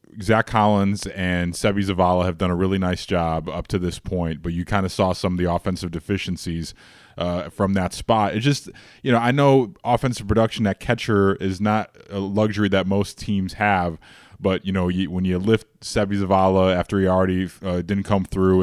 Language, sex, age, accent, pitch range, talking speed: English, male, 20-39, American, 90-105 Hz, 205 wpm